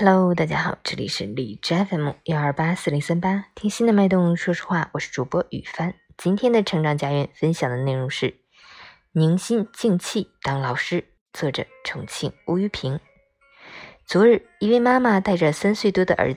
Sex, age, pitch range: female, 20-39, 150-210 Hz